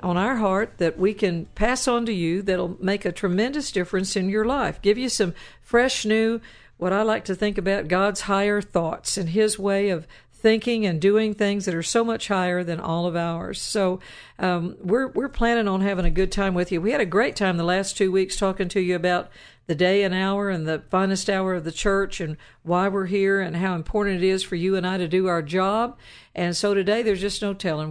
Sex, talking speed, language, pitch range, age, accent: female, 235 wpm, English, 170-200 Hz, 50-69, American